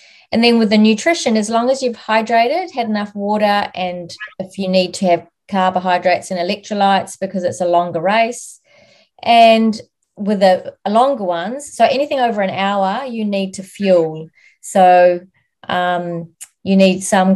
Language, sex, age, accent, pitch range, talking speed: English, female, 30-49, Australian, 185-225 Hz, 160 wpm